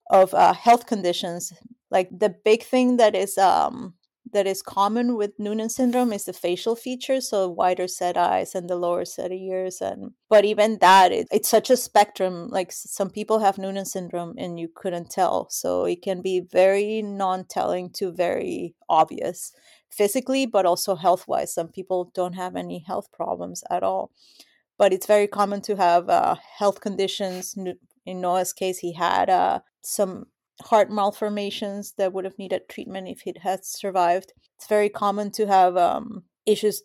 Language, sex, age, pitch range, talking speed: English, female, 30-49, 185-215 Hz, 170 wpm